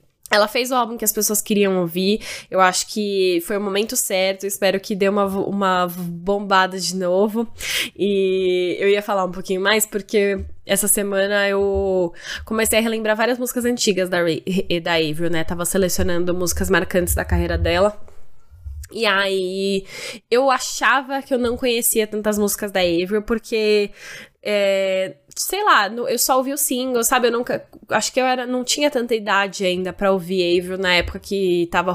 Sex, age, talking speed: female, 10-29, 170 wpm